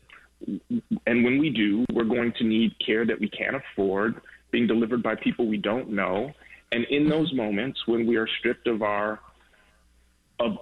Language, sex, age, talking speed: English, male, 30-49, 190 wpm